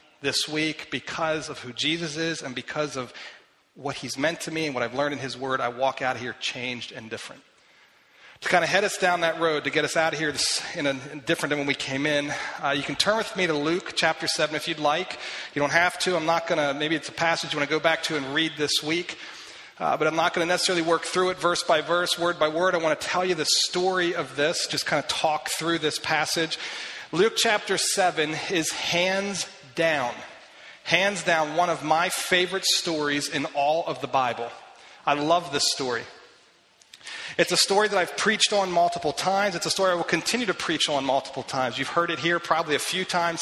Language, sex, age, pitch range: English, male, 40-59, 150-180 Hz